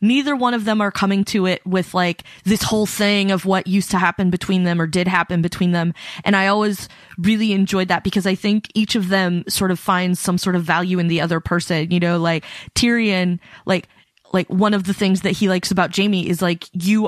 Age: 20-39